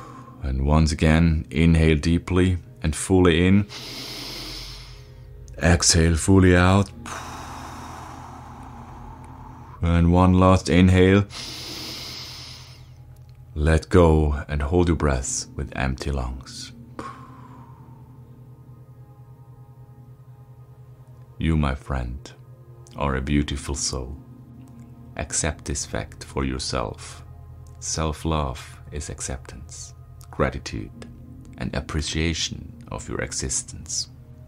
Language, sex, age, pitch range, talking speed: English, male, 30-49, 75-125 Hz, 80 wpm